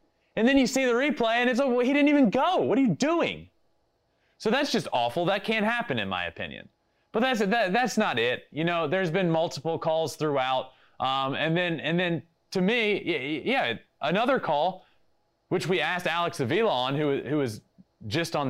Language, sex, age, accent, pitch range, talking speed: English, male, 30-49, American, 150-220 Hz, 205 wpm